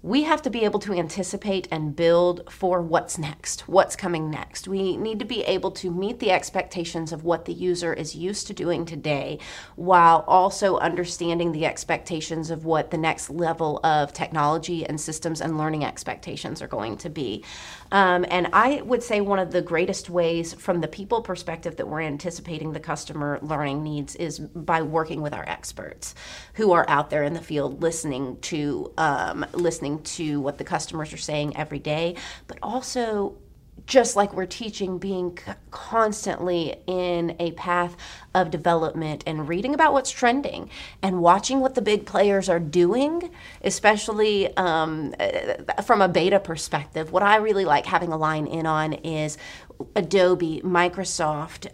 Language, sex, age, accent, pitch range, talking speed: English, female, 30-49, American, 160-195 Hz, 165 wpm